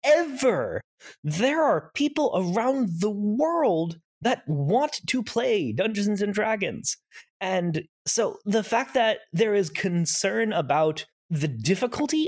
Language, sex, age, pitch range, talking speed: English, male, 20-39, 175-265 Hz, 120 wpm